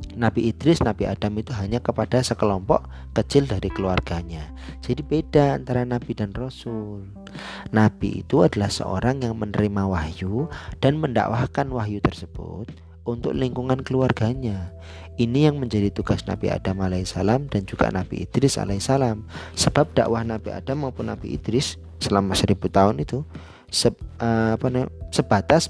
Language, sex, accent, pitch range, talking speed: Indonesian, male, native, 95-120 Hz, 130 wpm